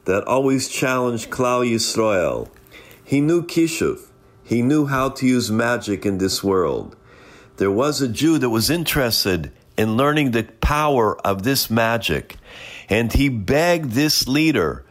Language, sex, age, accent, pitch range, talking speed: English, male, 50-69, American, 110-140 Hz, 145 wpm